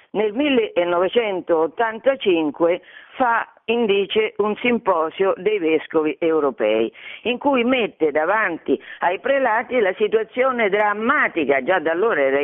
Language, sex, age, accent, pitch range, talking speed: Italian, female, 50-69, native, 175-265 Hz, 105 wpm